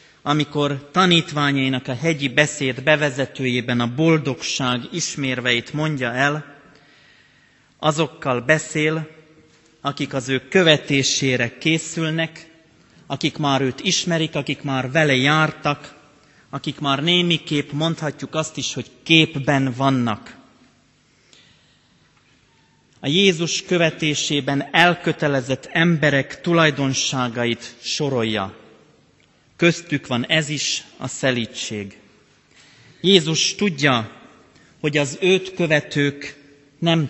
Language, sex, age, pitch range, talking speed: Hungarian, male, 30-49, 130-160 Hz, 90 wpm